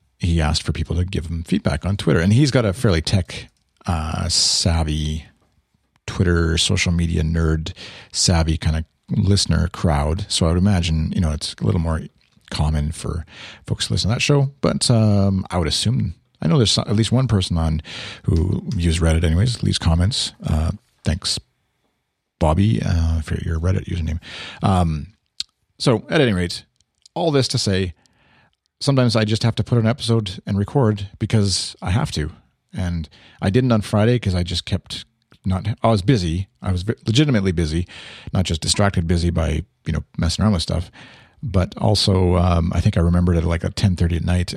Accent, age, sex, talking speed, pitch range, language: American, 40-59, male, 185 wpm, 85-110 Hz, English